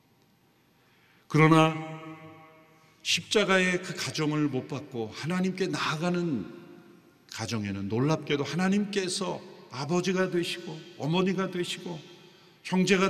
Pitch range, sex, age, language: 115-160 Hz, male, 50-69, Korean